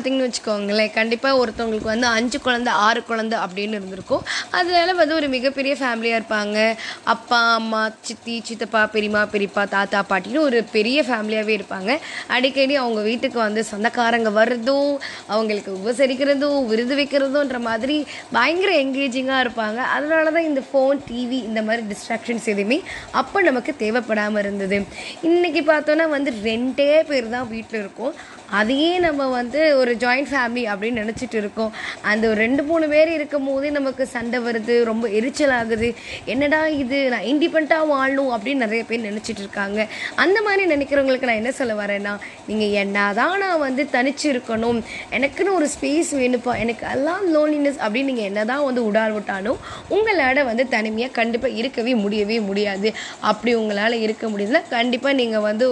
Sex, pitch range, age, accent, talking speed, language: female, 220-280 Hz, 20-39, native, 145 wpm, Tamil